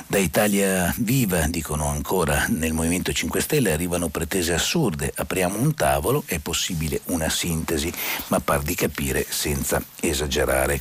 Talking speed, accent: 140 wpm, native